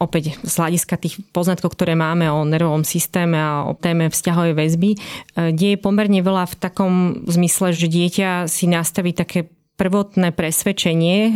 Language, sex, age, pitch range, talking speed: Slovak, female, 30-49, 155-180 Hz, 150 wpm